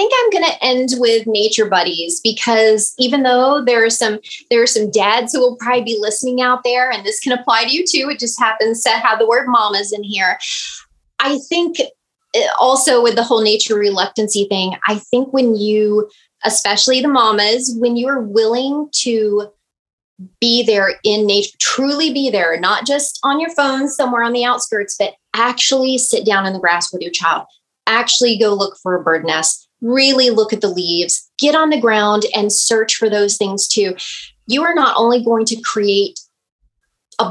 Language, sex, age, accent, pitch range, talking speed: English, female, 20-39, American, 205-255 Hz, 195 wpm